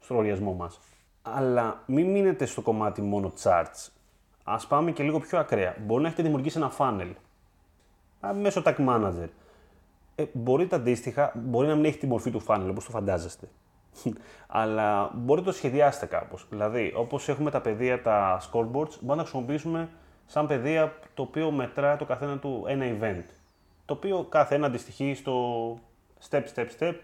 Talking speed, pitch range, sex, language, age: 165 wpm, 100-145 Hz, male, Greek, 30-49